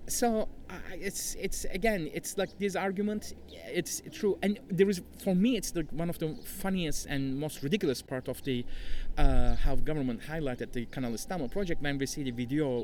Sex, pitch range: male, 140-195 Hz